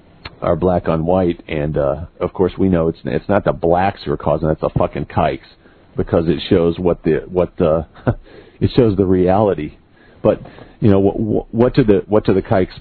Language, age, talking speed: English, 50-69, 210 wpm